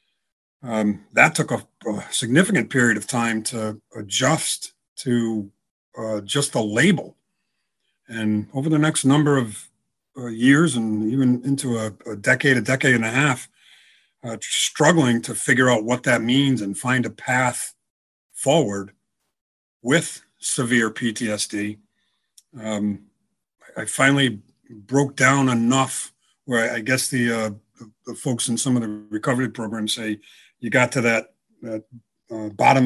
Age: 50-69